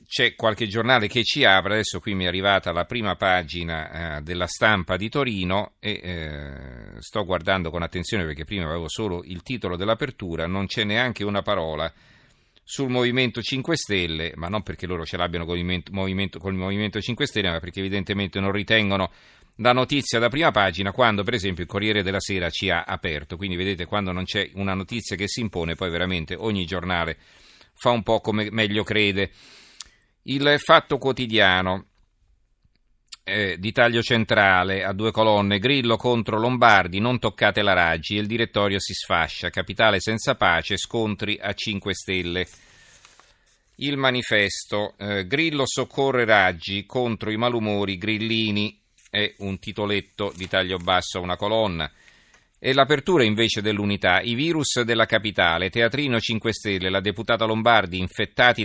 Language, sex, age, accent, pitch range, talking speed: Italian, male, 40-59, native, 90-115 Hz, 155 wpm